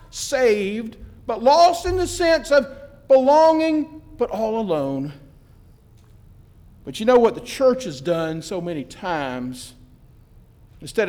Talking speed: 125 wpm